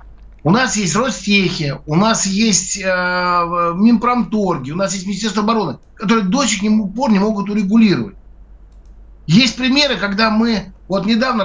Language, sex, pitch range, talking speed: Russian, male, 170-225 Hz, 140 wpm